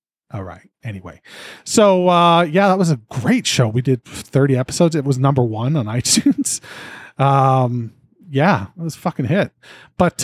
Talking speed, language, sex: 170 wpm, English, male